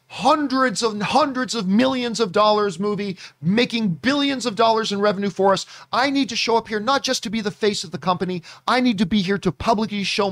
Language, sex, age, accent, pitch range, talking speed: English, male, 40-59, American, 140-225 Hz, 225 wpm